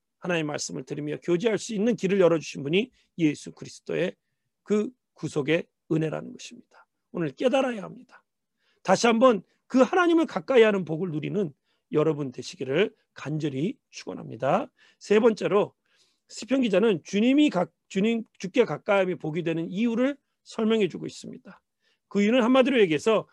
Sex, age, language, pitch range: male, 40-59, Korean, 170-240 Hz